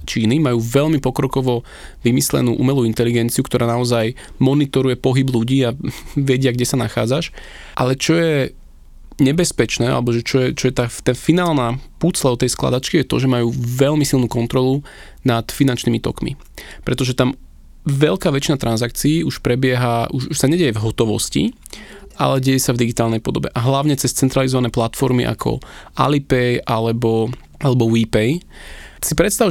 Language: Slovak